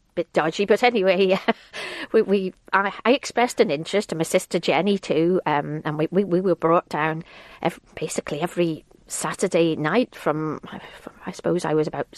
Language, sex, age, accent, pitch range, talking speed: English, female, 40-59, British, 155-190 Hz, 175 wpm